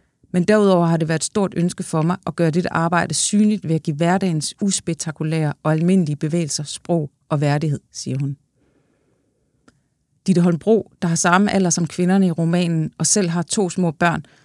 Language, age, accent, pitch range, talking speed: English, 30-49, Danish, 155-185 Hz, 185 wpm